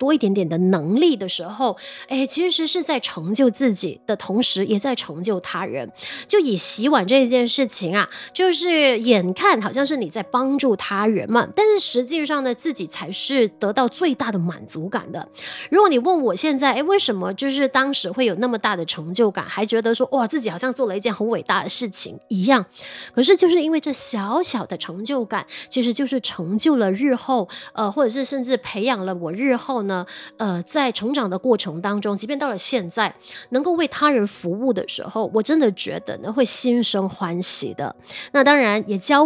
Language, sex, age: Chinese, female, 20-39